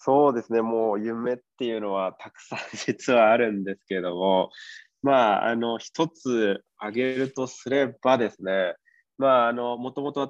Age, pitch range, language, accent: 20-39, 105-130 Hz, Japanese, native